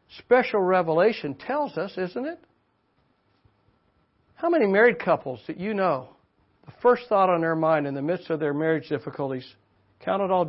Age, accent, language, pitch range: 60-79, American, English, 145-210 Hz